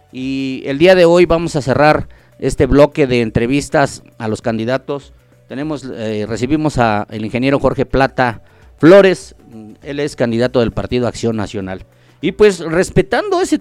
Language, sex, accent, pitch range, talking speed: Spanish, male, Mexican, 115-170 Hz, 150 wpm